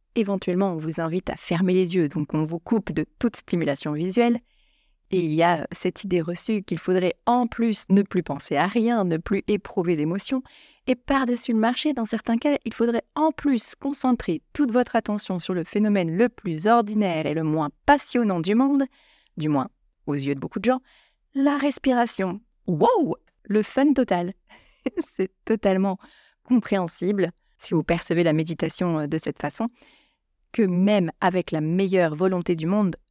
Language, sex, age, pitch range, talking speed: French, female, 30-49, 165-225 Hz, 175 wpm